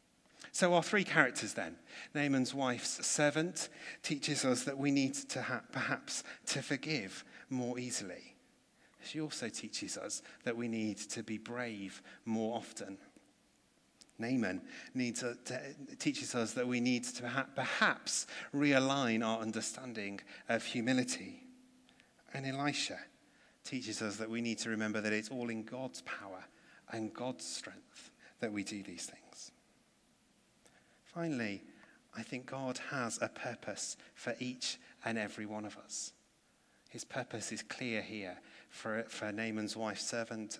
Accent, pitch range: British, 110-135 Hz